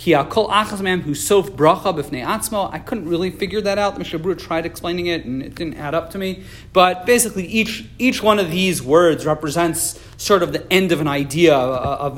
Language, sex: English, male